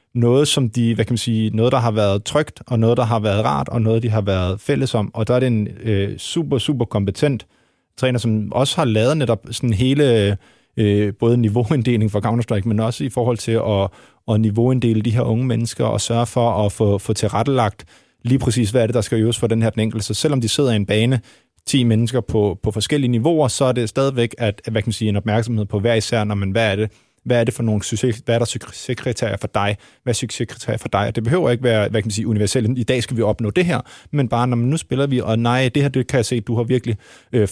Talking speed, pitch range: 255 wpm, 110-125 Hz